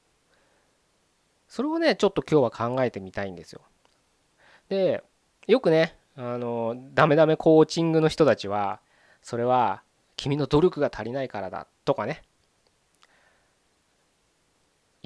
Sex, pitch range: male, 110-155 Hz